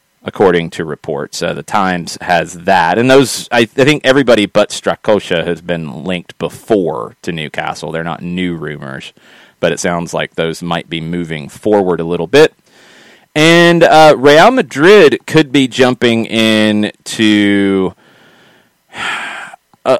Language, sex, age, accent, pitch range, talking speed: English, male, 30-49, American, 90-140 Hz, 140 wpm